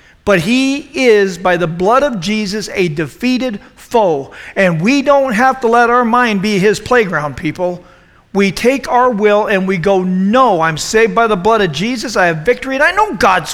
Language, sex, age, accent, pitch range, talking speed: English, male, 50-69, American, 160-210 Hz, 200 wpm